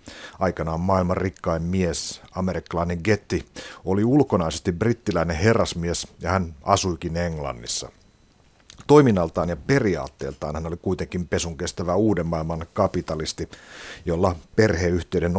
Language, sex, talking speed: Finnish, male, 105 wpm